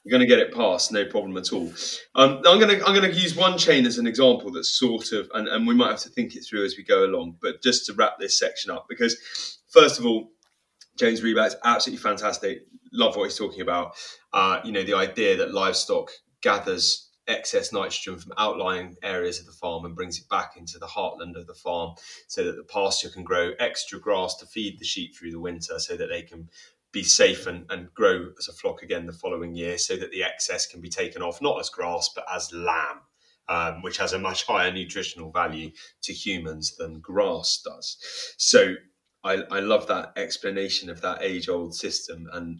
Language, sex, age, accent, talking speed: English, male, 20-39, British, 220 wpm